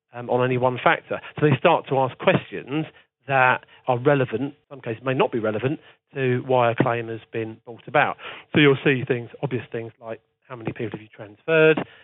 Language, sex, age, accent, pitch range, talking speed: English, male, 40-59, British, 120-145 Hz, 210 wpm